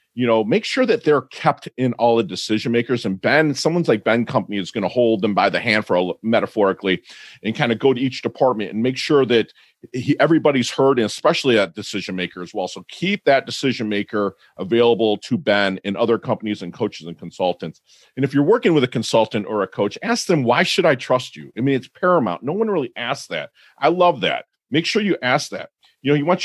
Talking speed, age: 235 wpm, 40-59